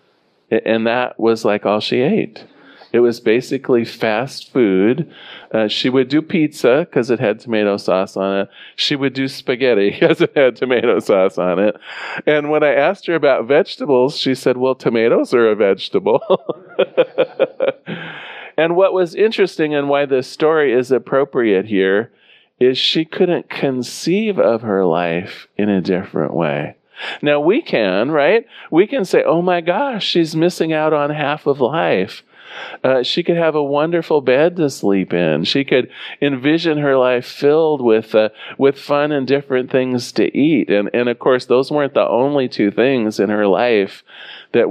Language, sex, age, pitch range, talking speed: English, male, 40-59, 110-155 Hz, 170 wpm